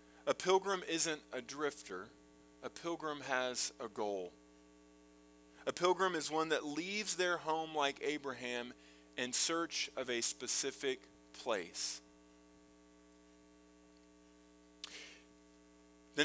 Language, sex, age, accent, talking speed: English, male, 40-59, American, 100 wpm